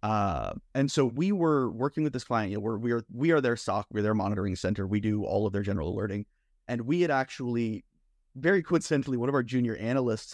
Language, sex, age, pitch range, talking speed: English, male, 30-49, 105-130 Hz, 230 wpm